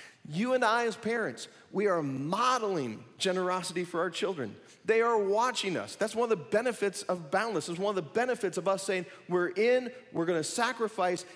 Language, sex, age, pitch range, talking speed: English, male, 40-59, 160-220 Hz, 195 wpm